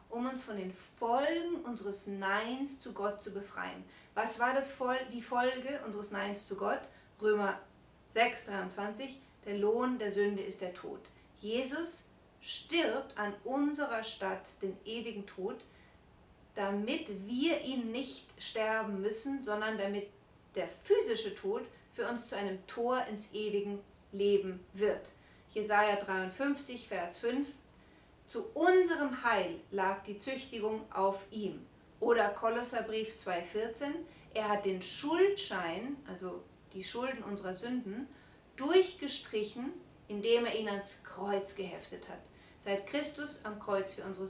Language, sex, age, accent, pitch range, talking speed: German, female, 30-49, German, 200-260 Hz, 130 wpm